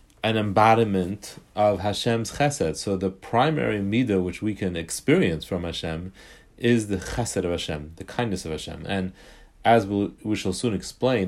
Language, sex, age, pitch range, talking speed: English, male, 30-49, 95-125 Hz, 165 wpm